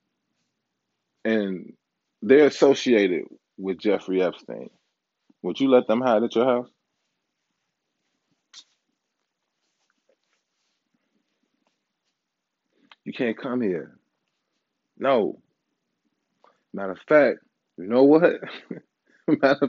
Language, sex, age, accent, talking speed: English, male, 20-39, American, 80 wpm